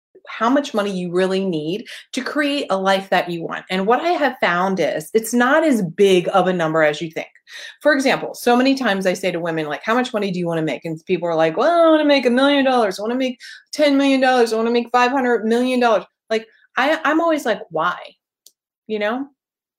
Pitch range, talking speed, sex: 185-270 Hz, 245 wpm, female